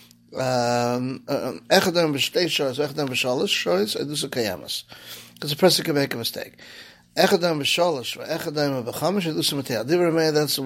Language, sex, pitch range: English, male, 135-160 Hz